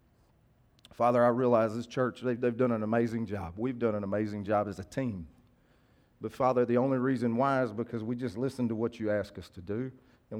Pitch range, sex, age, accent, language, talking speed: 105-125 Hz, male, 40-59, American, English, 220 wpm